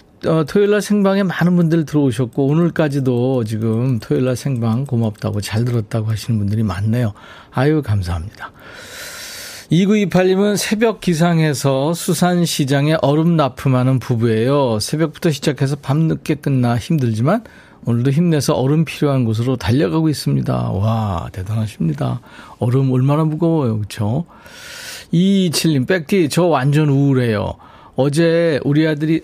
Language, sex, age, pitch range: Korean, male, 40-59, 120-160 Hz